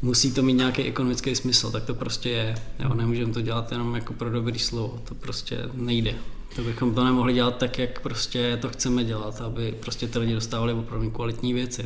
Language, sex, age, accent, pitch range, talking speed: Czech, male, 20-39, native, 115-130 Hz, 200 wpm